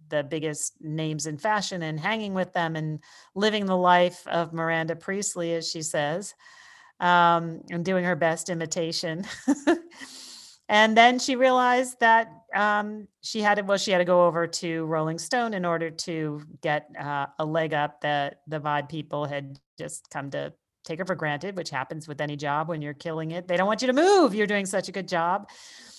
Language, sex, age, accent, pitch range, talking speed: English, female, 40-59, American, 155-205 Hz, 195 wpm